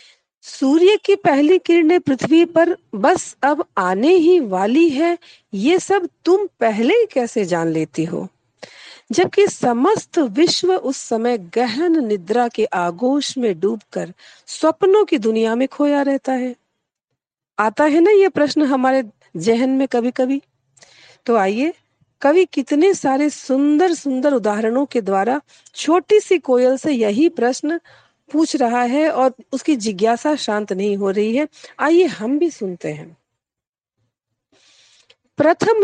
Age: 40-59